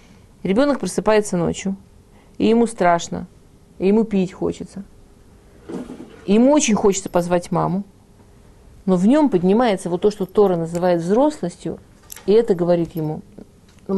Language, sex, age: Russian, female, 40-59